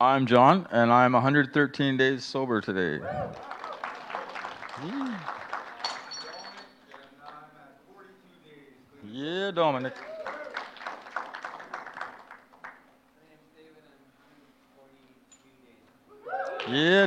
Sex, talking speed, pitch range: male, 45 wpm, 135-215 Hz